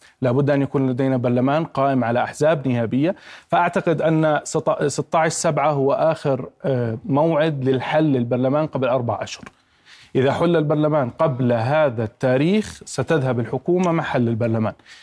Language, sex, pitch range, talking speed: Arabic, male, 130-155 Hz, 125 wpm